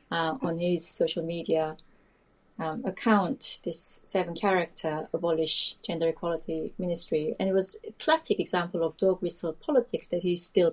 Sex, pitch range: female, 170-210 Hz